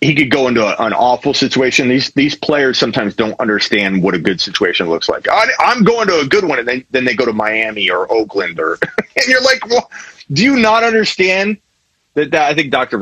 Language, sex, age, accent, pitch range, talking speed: English, male, 30-49, American, 125-170 Hz, 230 wpm